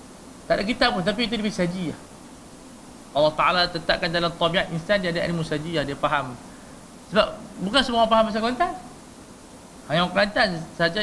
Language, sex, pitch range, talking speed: Malay, male, 155-200 Hz, 165 wpm